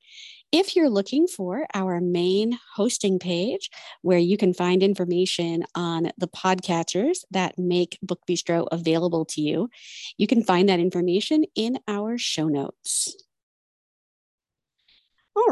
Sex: female